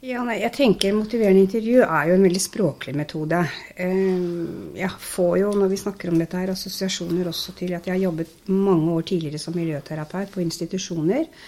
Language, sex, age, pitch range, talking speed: English, female, 50-69, 170-195 Hz, 185 wpm